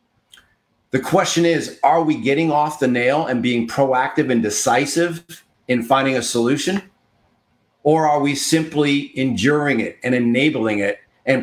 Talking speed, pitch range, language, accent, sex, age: 145 wpm, 125-155 Hz, English, American, male, 40-59